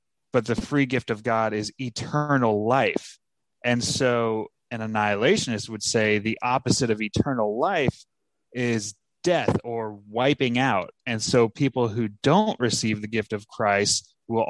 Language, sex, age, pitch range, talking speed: English, male, 20-39, 110-130 Hz, 150 wpm